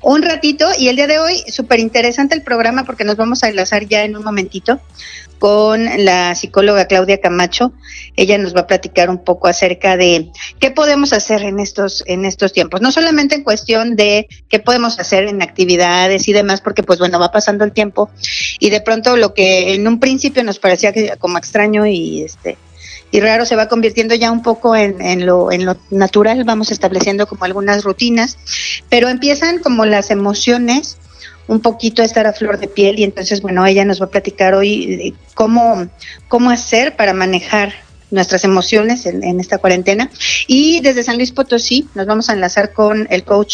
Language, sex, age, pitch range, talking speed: Spanish, female, 40-59, 185-230 Hz, 190 wpm